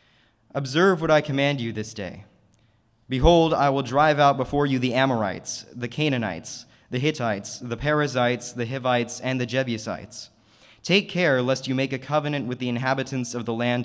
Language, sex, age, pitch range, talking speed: English, male, 20-39, 115-135 Hz, 175 wpm